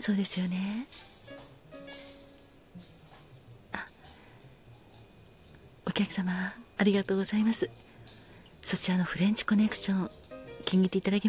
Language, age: Japanese, 40-59